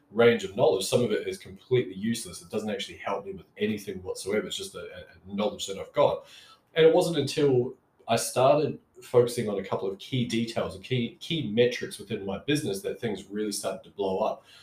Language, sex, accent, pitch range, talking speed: English, male, Australian, 95-135 Hz, 215 wpm